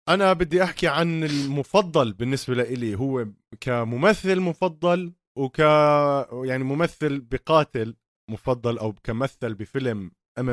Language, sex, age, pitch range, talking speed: Arabic, male, 30-49, 105-135 Hz, 110 wpm